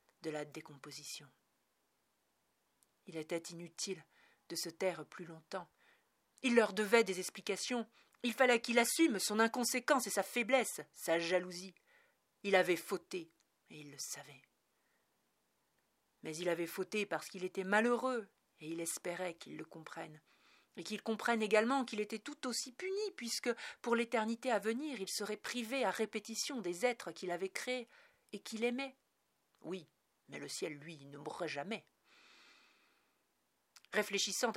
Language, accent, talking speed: French, French, 145 wpm